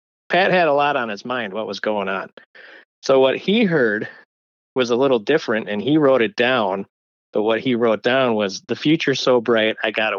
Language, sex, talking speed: English, male, 220 wpm